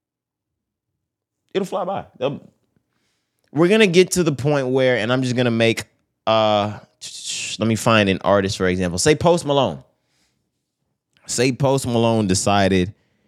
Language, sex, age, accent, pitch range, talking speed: English, male, 20-39, American, 105-130 Hz, 140 wpm